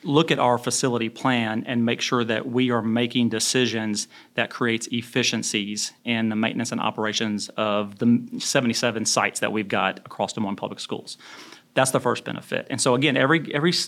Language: English